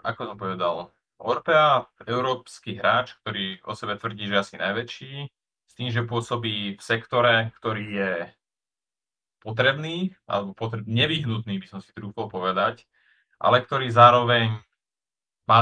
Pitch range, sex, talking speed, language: 100-120 Hz, male, 130 wpm, Slovak